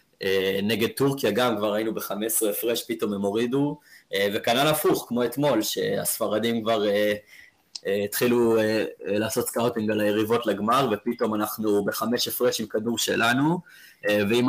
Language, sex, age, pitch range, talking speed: Hebrew, male, 20-39, 105-135 Hz, 125 wpm